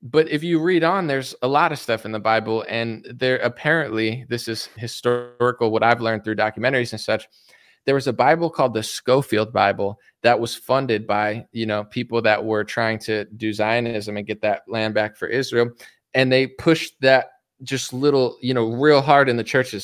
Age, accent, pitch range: 20-39, American, 110-135 Hz